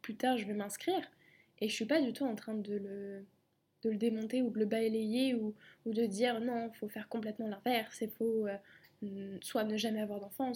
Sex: female